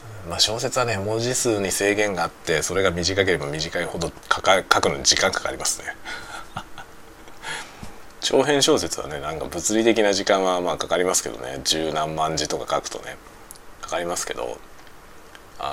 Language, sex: Japanese, male